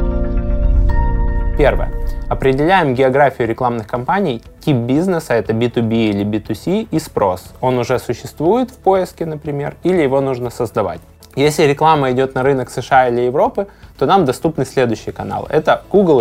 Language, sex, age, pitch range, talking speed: Russian, male, 20-39, 115-145 Hz, 150 wpm